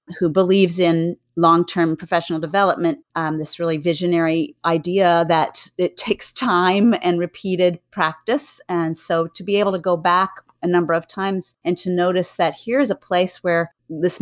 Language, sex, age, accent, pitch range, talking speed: English, female, 30-49, American, 165-185 Hz, 165 wpm